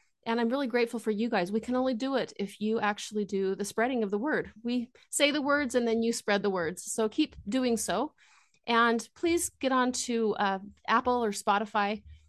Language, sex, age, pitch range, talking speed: English, female, 30-49, 205-240 Hz, 215 wpm